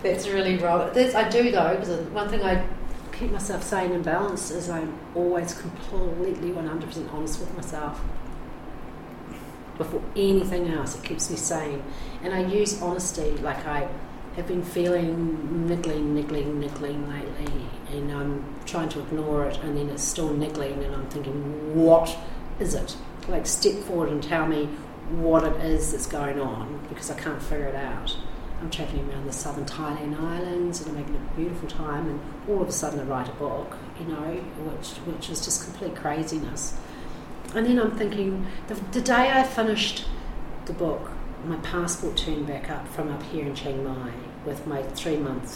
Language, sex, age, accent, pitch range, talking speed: English, female, 40-59, Australian, 145-175 Hz, 175 wpm